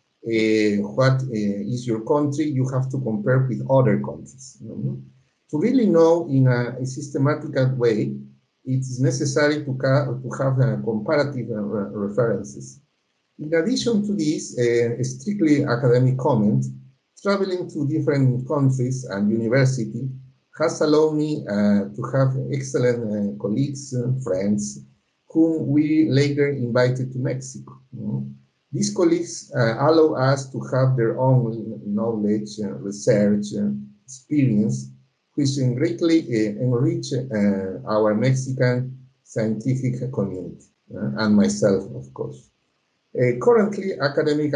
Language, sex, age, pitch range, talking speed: Czech, male, 50-69, 105-145 Hz, 130 wpm